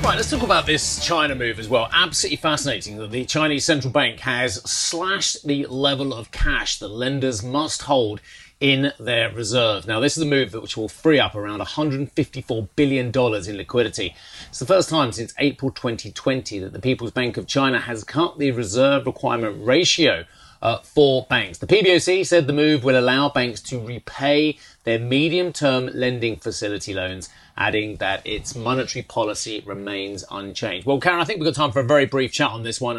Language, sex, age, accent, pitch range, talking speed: English, male, 30-49, British, 115-140 Hz, 185 wpm